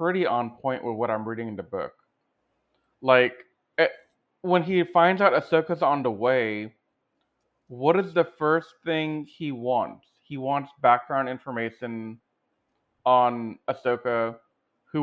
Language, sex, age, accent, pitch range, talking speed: English, male, 30-49, American, 120-155 Hz, 130 wpm